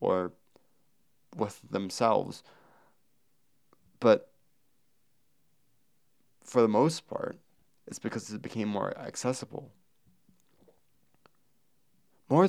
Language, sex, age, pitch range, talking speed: English, male, 20-39, 95-120 Hz, 70 wpm